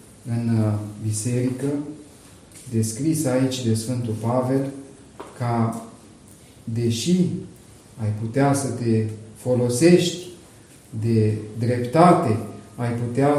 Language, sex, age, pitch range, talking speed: Romanian, male, 40-59, 110-140 Hz, 80 wpm